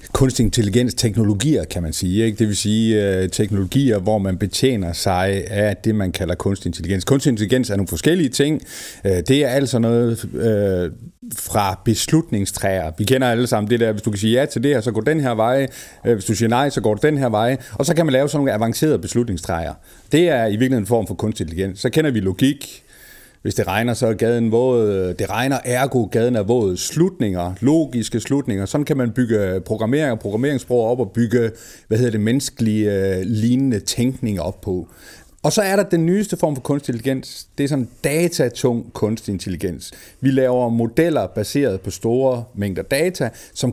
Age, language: 40-59, Danish